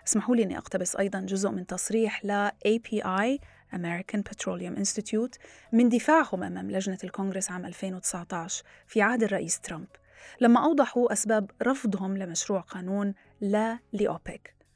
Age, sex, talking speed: 30-49, female, 125 wpm